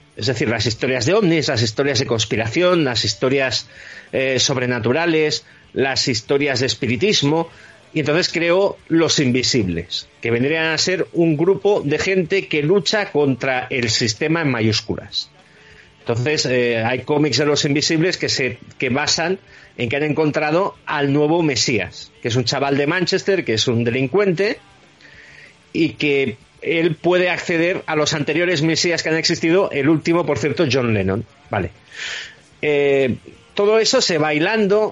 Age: 40-59